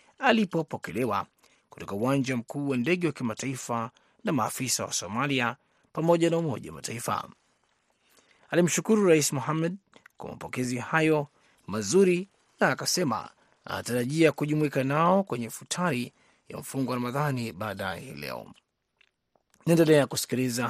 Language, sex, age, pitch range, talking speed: Swahili, male, 30-49, 120-160 Hz, 115 wpm